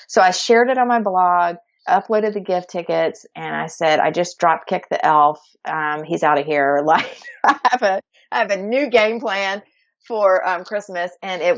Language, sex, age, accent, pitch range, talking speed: English, female, 40-59, American, 165-225 Hz, 205 wpm